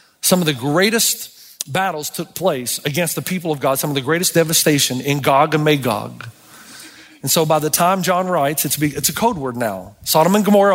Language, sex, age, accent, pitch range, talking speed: English, male, 40-59, American, 150-205 Hz, 200 wpm